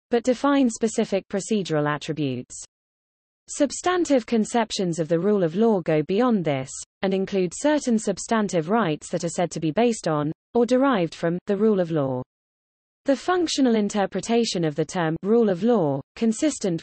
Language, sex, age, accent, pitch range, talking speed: English, female, 20-39, British, 160-235 Hz, 155 wpm